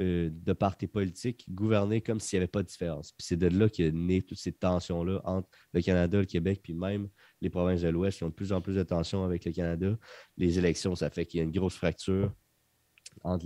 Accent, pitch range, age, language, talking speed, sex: Canadian, 90-110 Hz, 30-49, French, 235 wpm, male